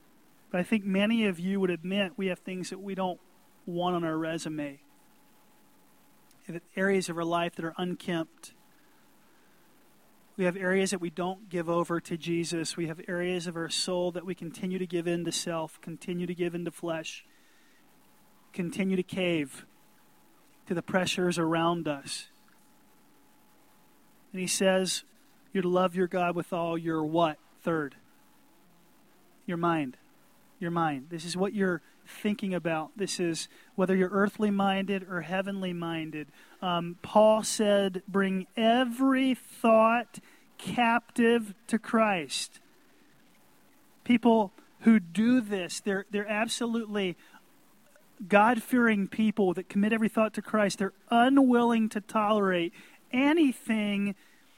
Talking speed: 135 wpm